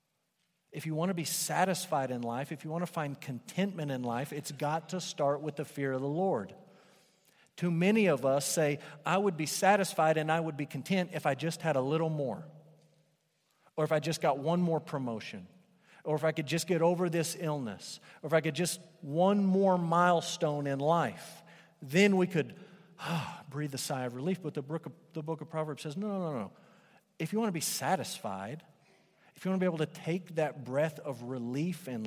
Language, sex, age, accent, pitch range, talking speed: English, male, 40-59, American, 135-170 Hz, 210 wpm